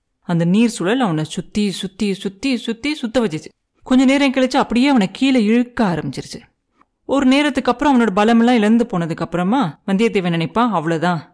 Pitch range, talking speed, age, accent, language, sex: 175-240 Hz, 150 wpm, 30-49, native, Tamil, female